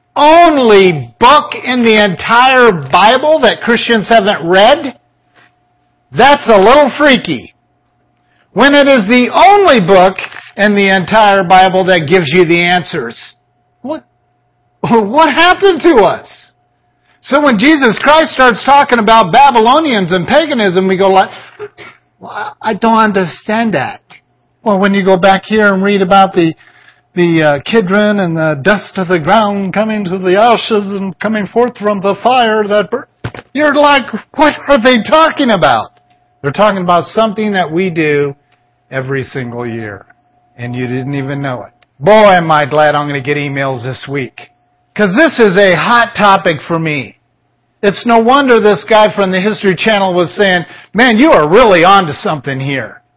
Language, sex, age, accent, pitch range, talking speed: English, male, 50-69, American, 160-230 Hz, 160 wpm